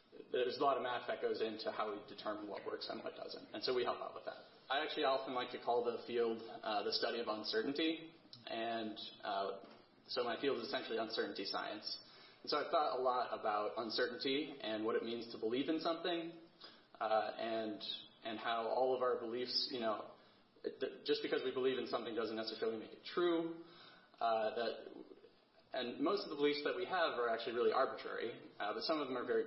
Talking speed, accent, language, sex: 215 wpm, American, English, male